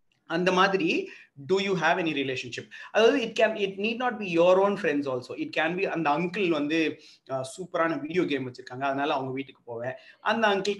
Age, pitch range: 30-49, 140-190 Hz